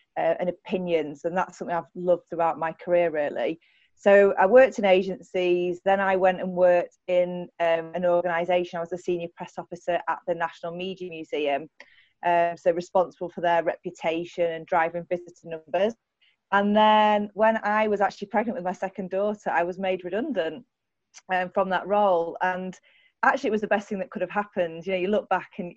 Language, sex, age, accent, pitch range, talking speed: English, female, 30-49, British, 175-200 Hz, 195 wpm